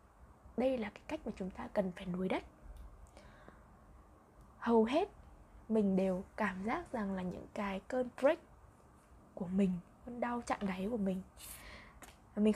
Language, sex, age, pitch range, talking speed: Vietnamese, female, 20-39, 195-260 Hz, 155 wpm